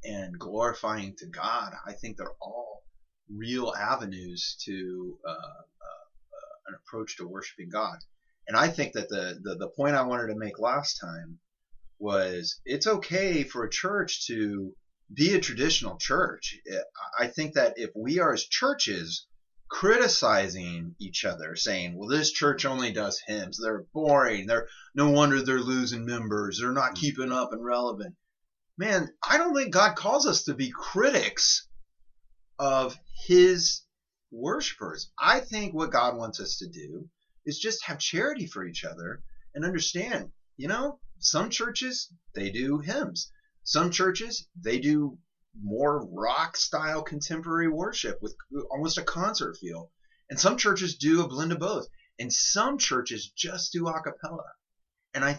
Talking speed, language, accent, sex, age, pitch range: 155 wpm, English, American, male, 30-49, 115-185 Hz